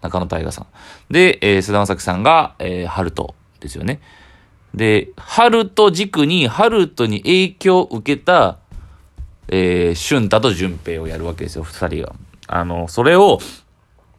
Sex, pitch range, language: male, 90-125 Hz, Japanese